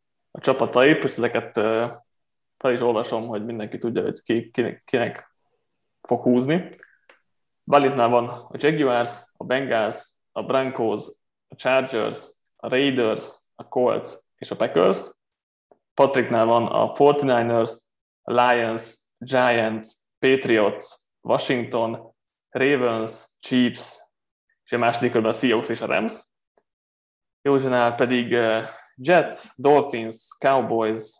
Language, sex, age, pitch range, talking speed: Hungarian, male, 20-39, 110-130 Hz, 110 wpm